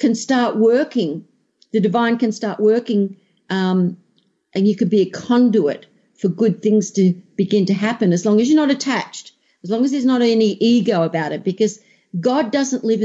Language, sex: English, female